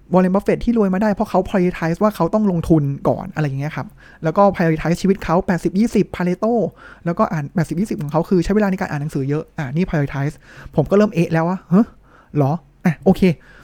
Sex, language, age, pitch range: male, Thai, 20-39, 150-195 Hz